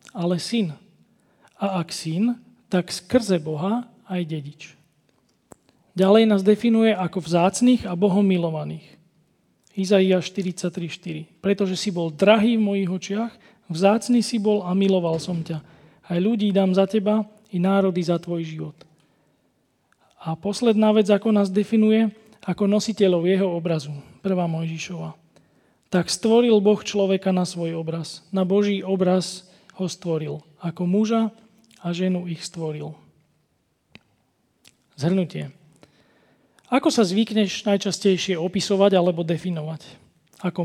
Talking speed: 125 wpm